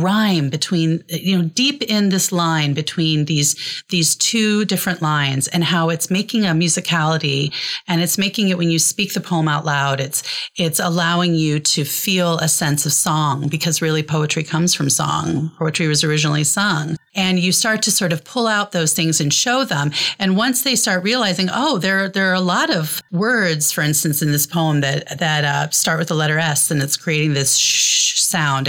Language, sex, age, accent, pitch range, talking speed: English, female, 30-49, American, 150-185 Hz, 200 wpm